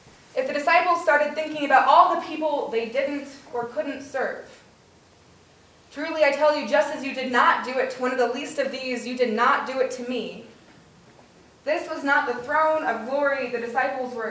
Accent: American